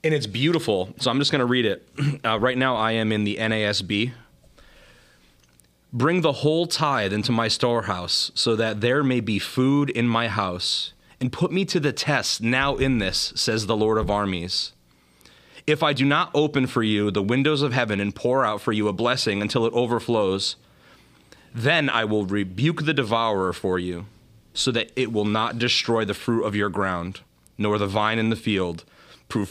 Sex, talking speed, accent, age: male, 195 wpm, American, 30-49